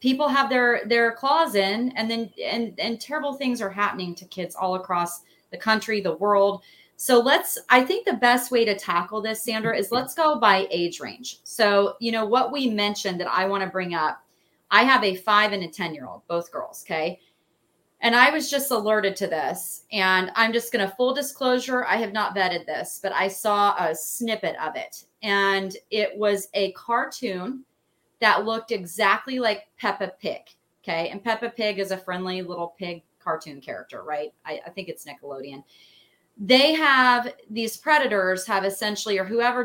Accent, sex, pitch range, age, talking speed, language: American, female, 190-245 Hz, 30-49, 190 wpm, English